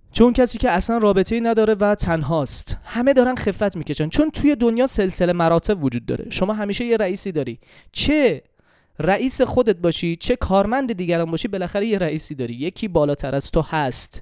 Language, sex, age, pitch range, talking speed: Persian, male, 20-39, 155-225 Hz, 175 wpm